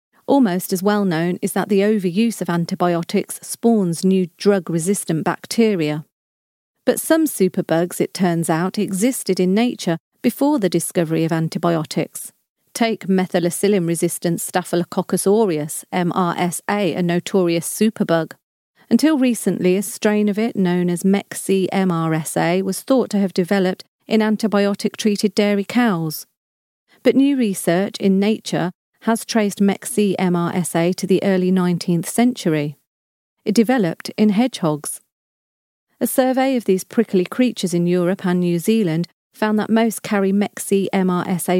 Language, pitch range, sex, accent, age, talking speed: English, 175-215 Hz, female, British, 40-59, 130 wpm